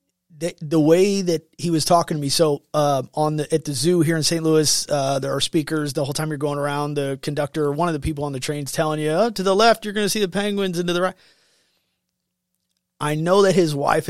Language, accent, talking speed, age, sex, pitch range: English, American, 255 wpm, 30-49, male, 140-170 Hz